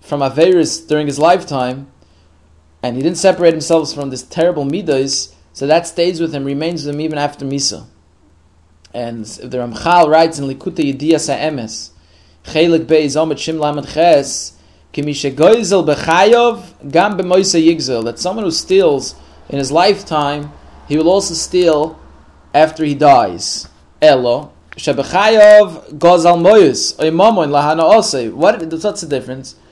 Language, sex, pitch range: English, male, 140-175 Hz